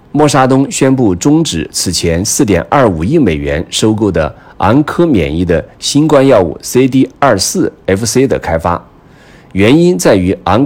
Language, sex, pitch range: Chinese, male, 90-135 Hz